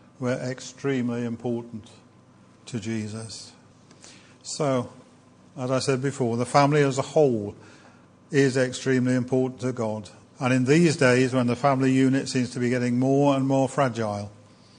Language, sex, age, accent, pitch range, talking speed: English, male, 50-69, British, 120-140 Hz, 145 wpm